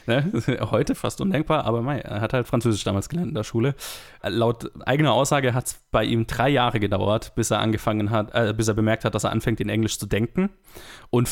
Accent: German